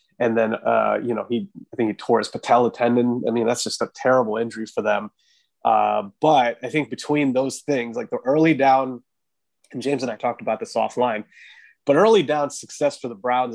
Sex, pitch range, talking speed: male, 120-155 Hz, 215 wpm